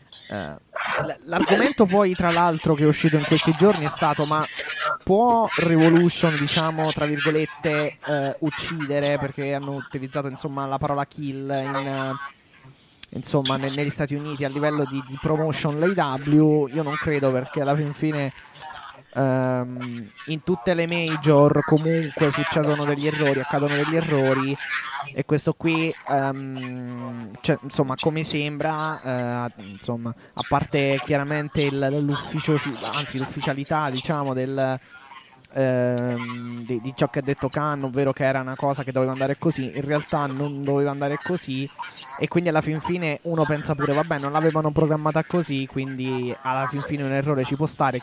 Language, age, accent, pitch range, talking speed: Italian, 20-39, native, 135-155 Hz, 145 wpm